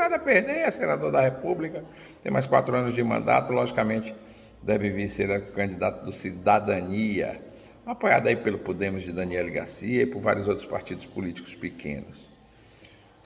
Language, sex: Portuguese, male